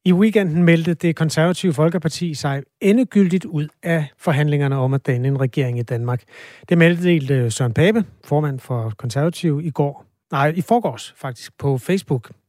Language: Danish